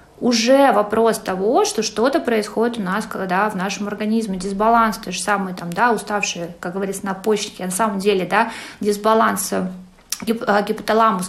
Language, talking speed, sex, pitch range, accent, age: Russian, 160 wpm, female, 190-230 Hz, native, 20-39